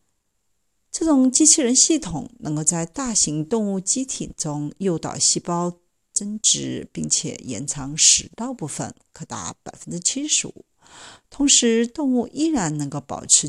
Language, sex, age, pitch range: Chinese, female, 50-69, 150-245 Hz